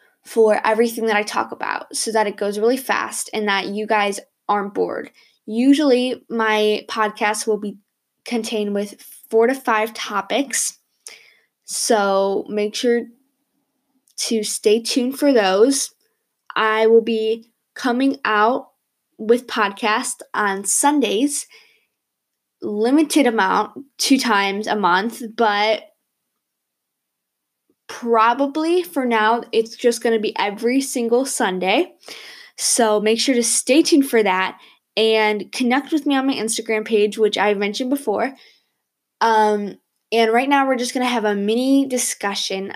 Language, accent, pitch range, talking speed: English, American, 215-260 Hz, 135 wpm